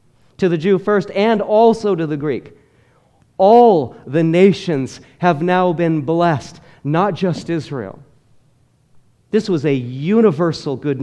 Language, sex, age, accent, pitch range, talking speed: English, male, 40-59, American, 130-170 Hz, 130 wpm